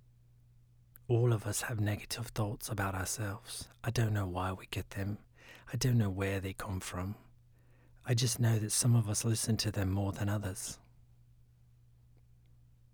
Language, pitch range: English, 100-120 Hz